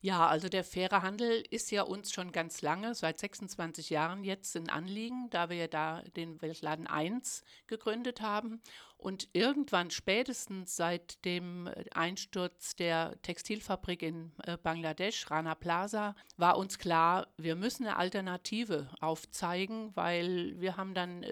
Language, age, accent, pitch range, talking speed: German, 60-79, German, 170-205 Hz, 140 wpm